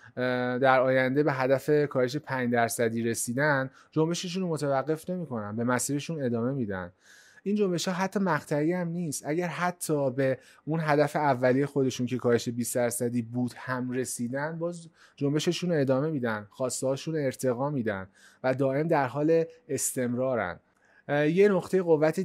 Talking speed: 145 wpm